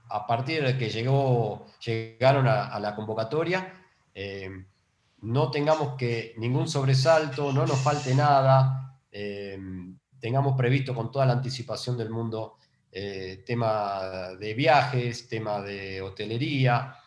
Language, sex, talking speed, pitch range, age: Spanish, male, 125 wpm, 110-140 Hz, 40-59